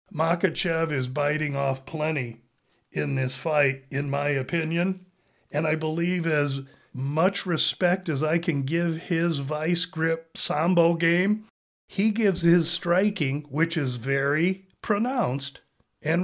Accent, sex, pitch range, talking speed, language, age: American, male, 140-170 Hz, 130 wpm, English, 50-69